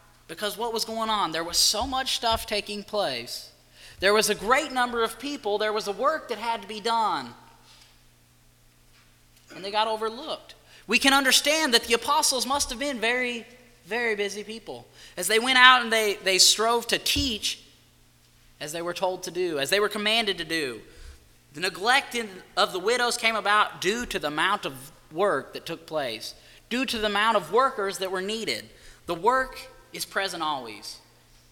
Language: English